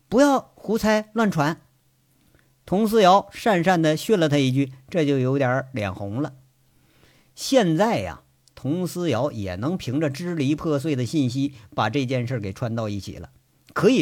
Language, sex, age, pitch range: Chinese, male, 50-69, 125-175 Hz